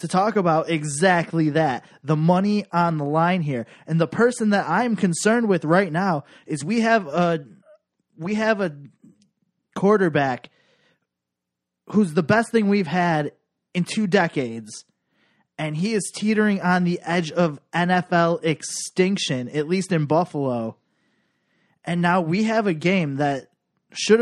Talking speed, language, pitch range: 145 wpm, English, 150-190 Hz